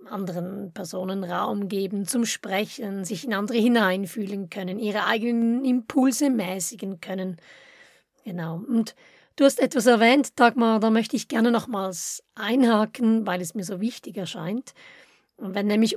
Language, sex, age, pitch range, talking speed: German, female, 30-49, 195-250 Hz, 140 wpm